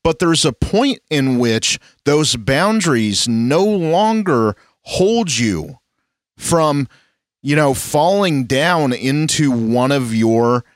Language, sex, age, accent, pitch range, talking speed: English, male, 40-59, American, 110-155 Hz, 115 wpm